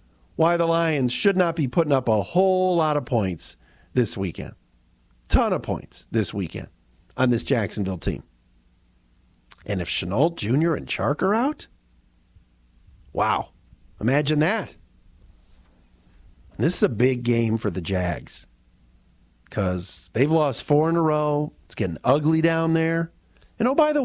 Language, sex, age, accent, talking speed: English, male, 40-59, American, 145 wpm